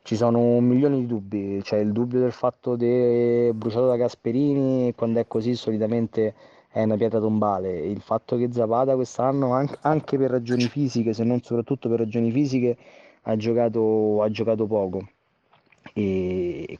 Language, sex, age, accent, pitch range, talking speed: Italian, male, 30-49, native, 105-125 Hz, 165 wpm